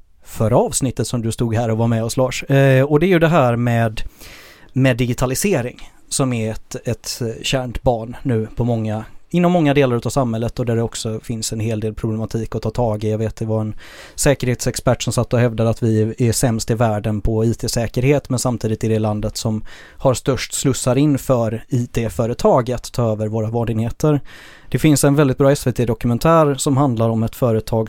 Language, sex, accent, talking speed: Swedish, male, native, 200 wpm